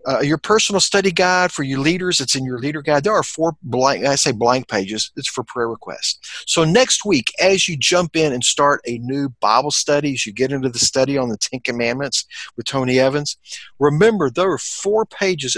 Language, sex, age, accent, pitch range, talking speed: English, male, 50-69, American, 125-175 Hz, 215 wpm